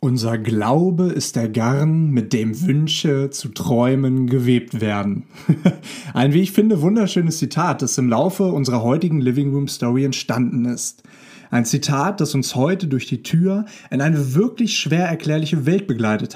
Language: German